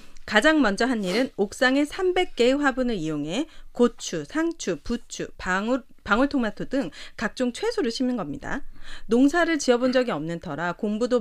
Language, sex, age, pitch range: Korean, female, 40-59, 205-285 Hz